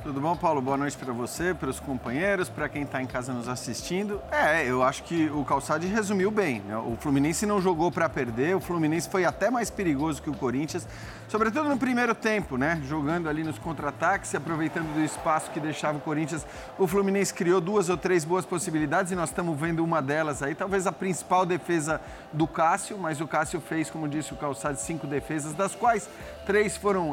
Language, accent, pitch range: Portuguese, Brazilian, 155-200 Hz